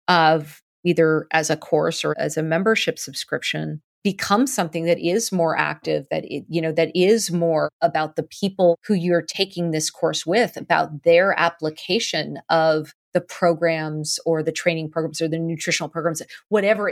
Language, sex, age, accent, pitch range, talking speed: English, female, 30-49, American, 160-180 Hz, 165 wpm